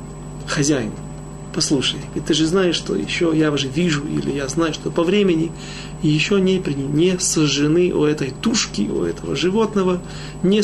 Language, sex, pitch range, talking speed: Russian, male, 145-195 Hz, 160 wpm